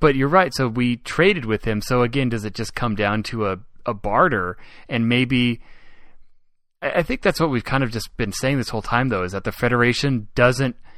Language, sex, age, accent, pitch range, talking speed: English, male, 20-39, American, 110-135 Hz, 220 wpm